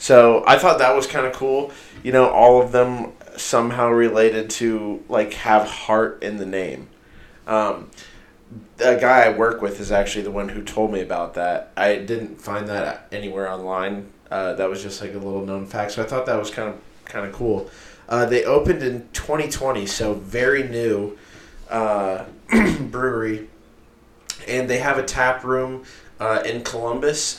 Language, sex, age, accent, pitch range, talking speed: English, male, 20-39, American, 105-120 Hz, 175 wpm